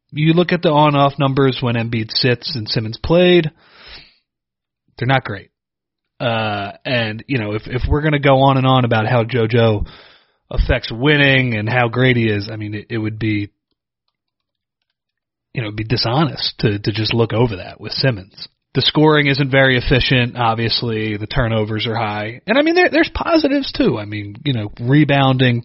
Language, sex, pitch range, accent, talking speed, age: English, male, 110-140 Hz, American, 180 wpm, 30-49